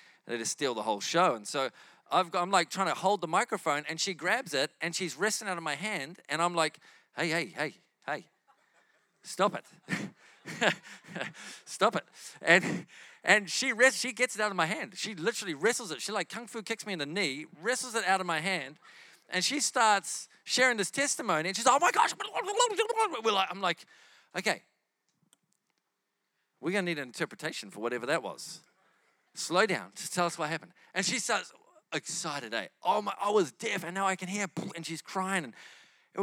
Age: 40-59